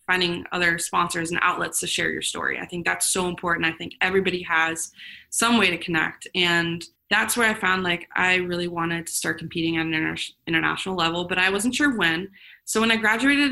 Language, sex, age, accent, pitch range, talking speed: English, female, 20-39, American, 170-215 Hz, 210 wpm